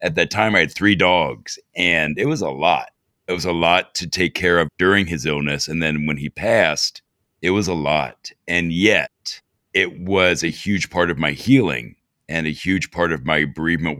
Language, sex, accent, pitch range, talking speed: English, male, American, 80-90 Hz, 210 wpm